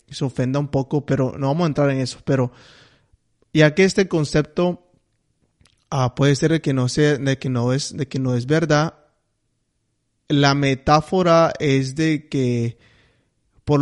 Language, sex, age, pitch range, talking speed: English, male, 30-49, 130-150 Hz, 165 wpm